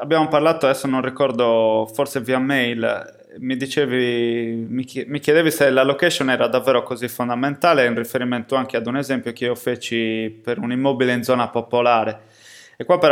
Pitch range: 120-145 Hz